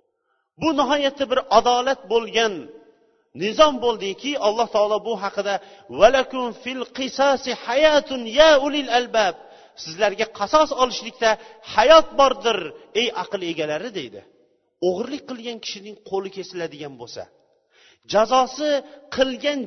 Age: 40-59